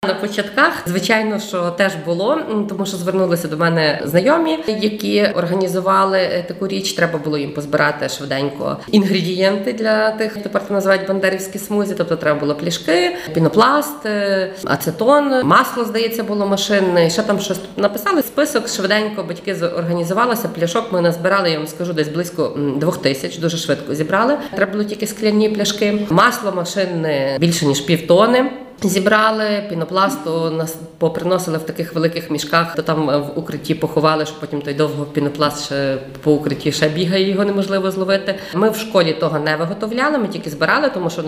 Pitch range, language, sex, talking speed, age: 160-210 Hz, Ukrainian, female, 155 wpm, 20-39